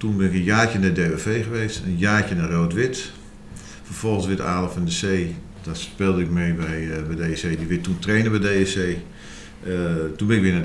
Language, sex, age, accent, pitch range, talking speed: Dutch, male, 50-69, Dutch, 90-105 Hz, 210 wpm